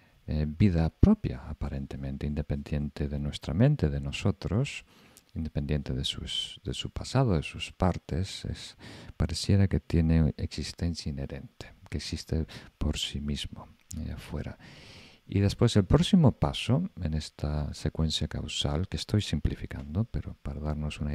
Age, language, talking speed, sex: 50-69, Spanish, 130 wpm, male